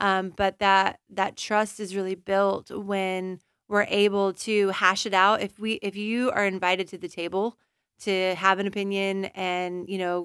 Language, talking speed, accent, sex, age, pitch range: English, 180 wpm, American, female, 20-39, 190-210 Hz